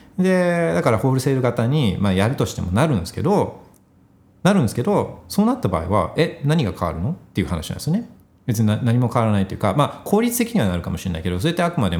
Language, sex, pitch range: Japanese, male, 95-130 Hz